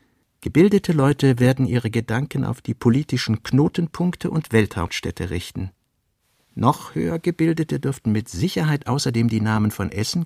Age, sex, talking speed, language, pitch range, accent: 60-79, male, 135 wpm, German, 105-140 Hz, German